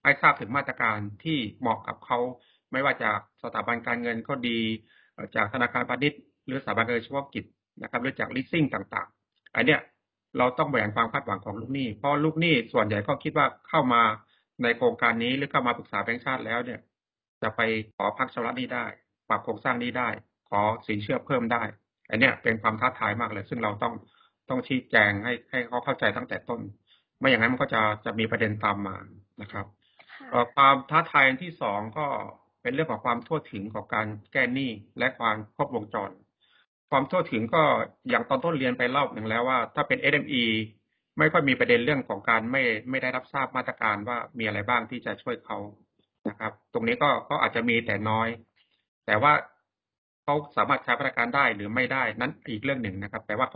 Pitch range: 110-130 Hz